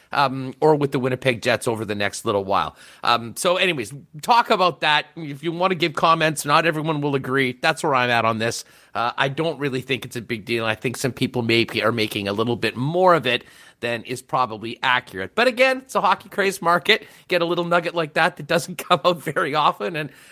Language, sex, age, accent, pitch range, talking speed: English, male, 40-59, American, 125-175 Hz, 235 wpm